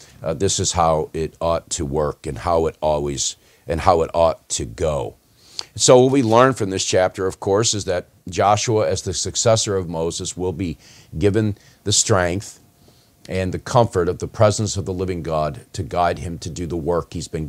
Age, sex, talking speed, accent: 50-69, male, 200 wpm, American